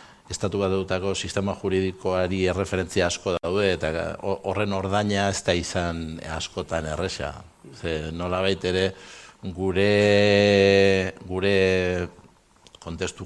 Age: 60-79